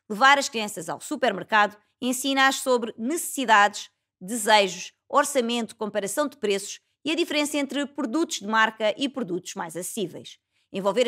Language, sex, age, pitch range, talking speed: Portuguese, female, 20-39, 205-280 Hz, 135 wpm